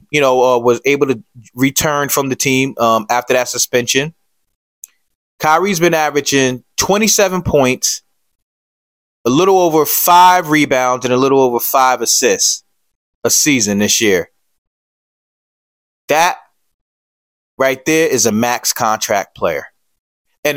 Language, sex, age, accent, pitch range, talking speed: English, male, 20-39, American, 130-170 Hz, 125 wpm